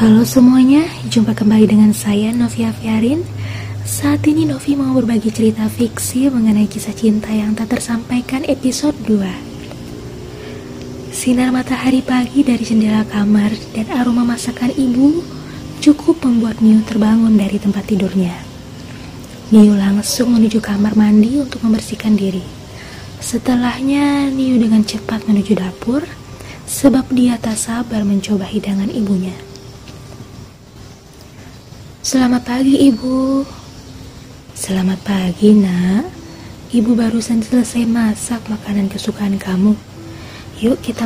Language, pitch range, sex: Indonesian, 195-240 Hz, female